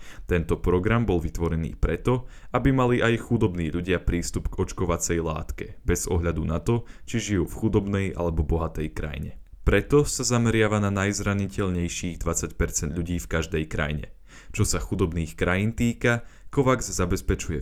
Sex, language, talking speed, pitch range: male, Slovak, 145 wpm, 85-110 Hz